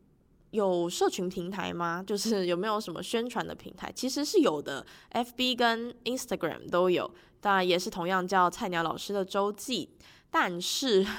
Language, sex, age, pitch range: Chinese, female, 10-29, 175-225 Hz